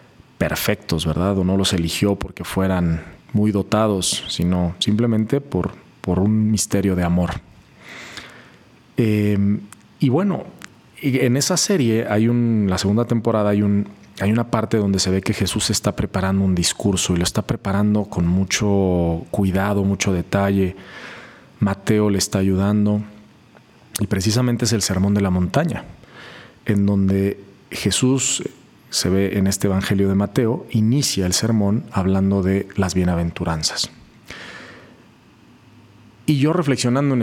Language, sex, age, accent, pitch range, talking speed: Spanish, male, 40-59, Mexican, 95-115 Hz, 135 wpm